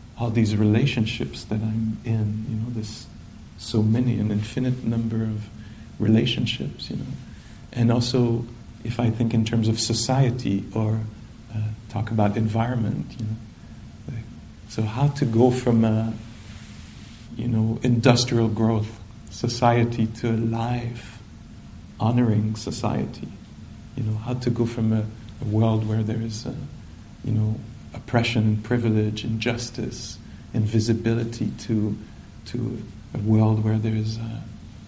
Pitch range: 110-120 Hz